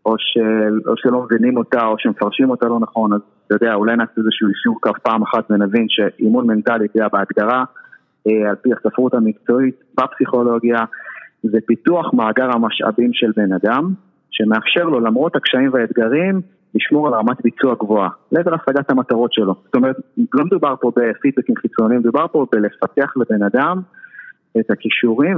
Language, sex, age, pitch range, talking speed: Hebrew, male, 30-49, 110-150 Hz, 155 wpm